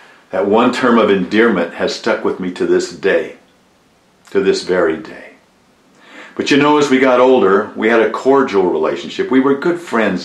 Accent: American